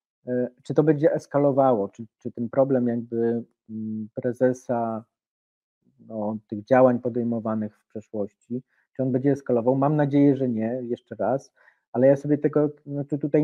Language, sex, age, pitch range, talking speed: Polish, male, 40-59, 120-145 Hz, 135 wpm